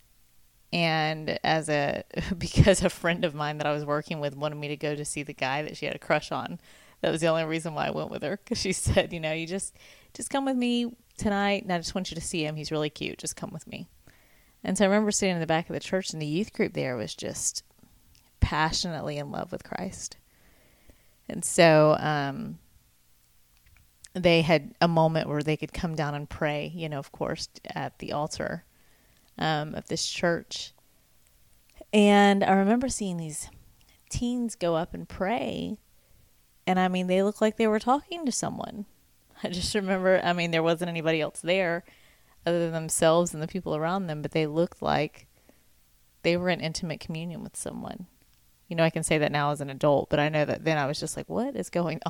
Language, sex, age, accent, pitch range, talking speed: English, female, 30-49, American, 150-190 Hz, 210 wpm